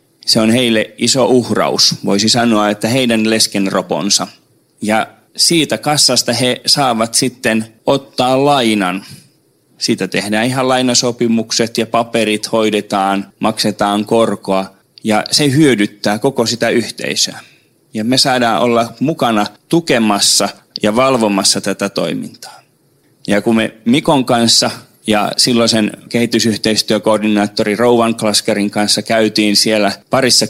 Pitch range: 105-125 Hz